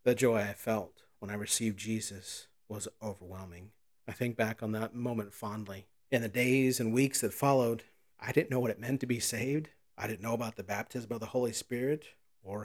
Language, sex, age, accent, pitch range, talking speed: English, male, 40-59, American, 110-130 Hz, 210 wpm